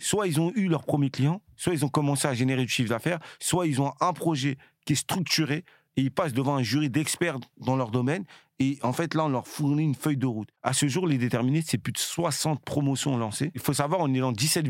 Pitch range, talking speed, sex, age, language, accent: 135-170 Hz, 255 wpm, male, 40-59, French, French